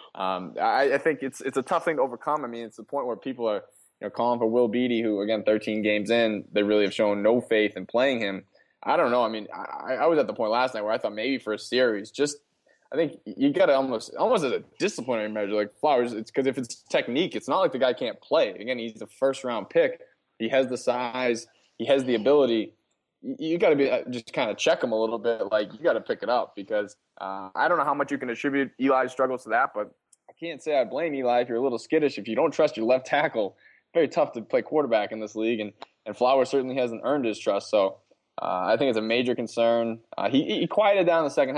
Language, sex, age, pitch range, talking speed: English, male, 20-39, 110-135 Hz, 265 wpm